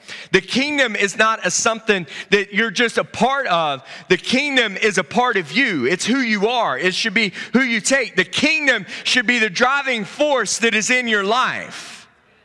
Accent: American